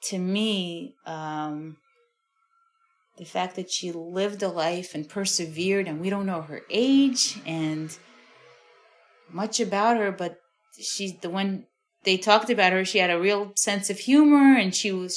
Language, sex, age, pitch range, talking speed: English, female, 30-49, 180-255 Hz, 160 wpm